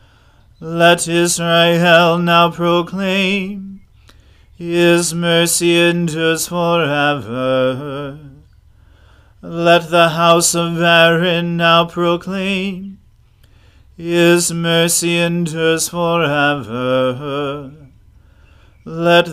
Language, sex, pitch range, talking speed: English, male, 140-175 Hz, 60 wpm